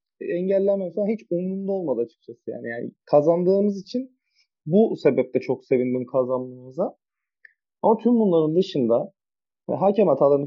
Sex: male